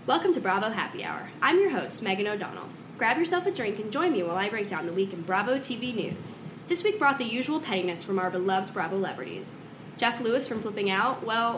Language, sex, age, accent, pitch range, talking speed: English, female, 10-29, American, 200-265 Hz, 230 wpm